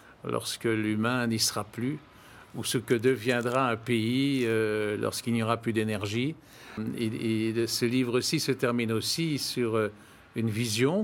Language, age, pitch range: French, 50-69, 110-135 Hz